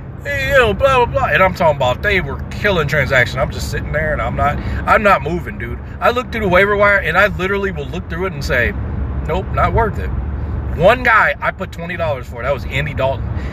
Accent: American